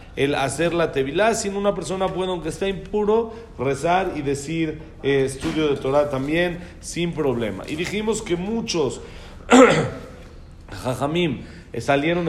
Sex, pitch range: male, 145-200 Hz